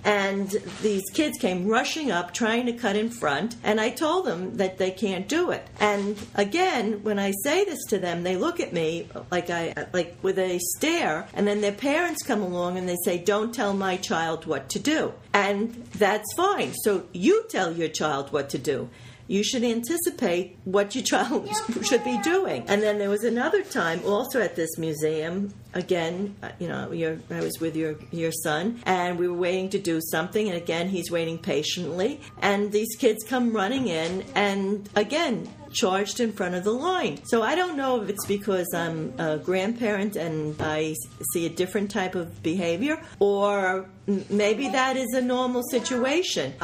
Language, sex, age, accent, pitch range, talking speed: English, female, 50-69, American, 175-230 Hz, 185 wpm